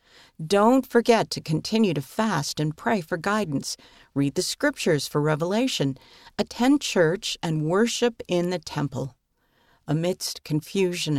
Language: English